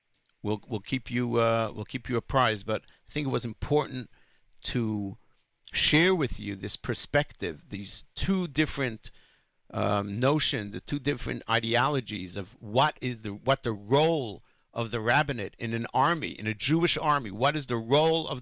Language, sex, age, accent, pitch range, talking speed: English, male, 60-79, American, 105-130 Hz, 170 wpm